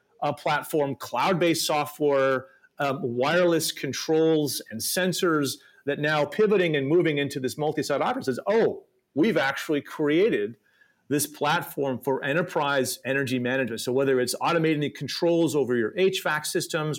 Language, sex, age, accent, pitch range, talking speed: English, male, 40-59, American, 130-175 Hz, 135 wpm